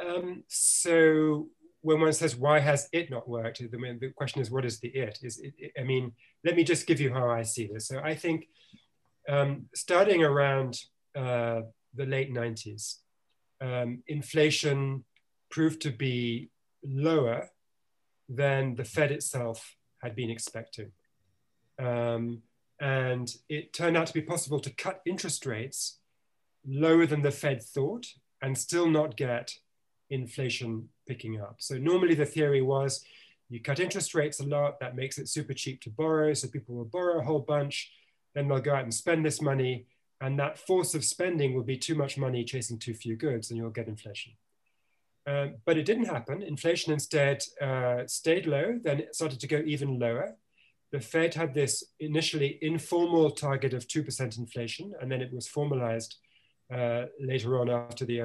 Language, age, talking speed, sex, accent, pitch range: English, 30-49, 170 wpm, male, British, 120-150 Hz